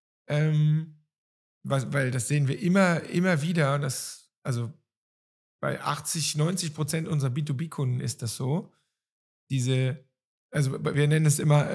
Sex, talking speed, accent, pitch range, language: male, 130 wpm, German, 130-155 Hz, German